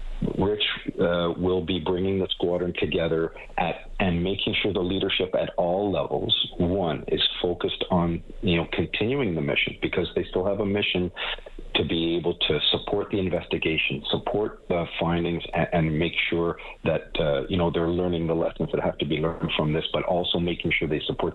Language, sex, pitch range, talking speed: English, male, 80-95 Hz, 190 wpm